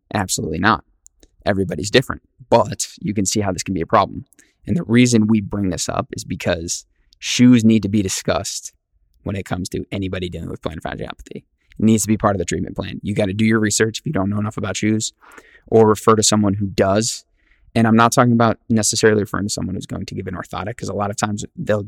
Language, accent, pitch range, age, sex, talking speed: English, American, 95-110 Hz, 20-39, male, 235 wpm